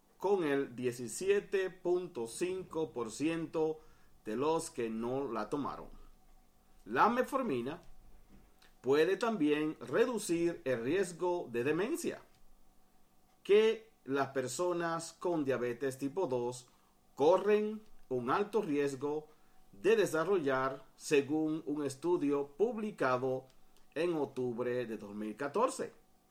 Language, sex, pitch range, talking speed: Spanish, male, 130-200 Hz, 90 wpm